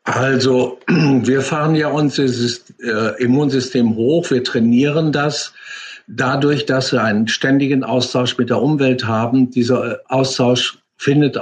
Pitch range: 120-140 Hz